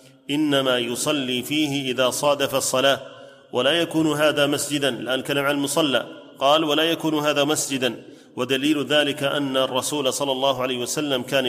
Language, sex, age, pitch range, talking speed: Arabic, male, 30-49, 130-150 Hz, 140 wpm